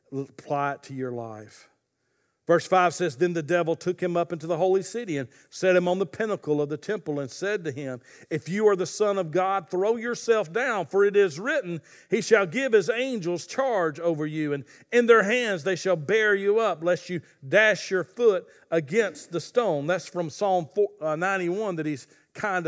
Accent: American